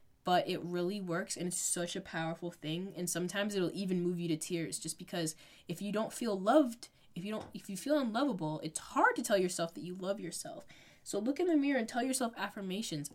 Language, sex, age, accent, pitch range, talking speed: English, female, 10-29, American, 170-220 Hz, 230 wpm